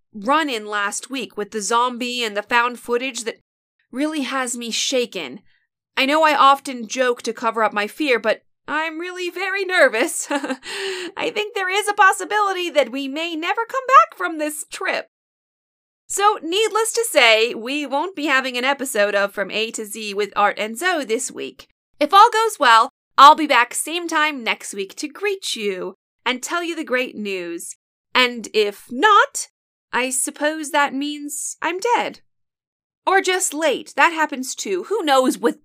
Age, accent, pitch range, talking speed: 30-49, American, 225-335 Hz, 175 wpm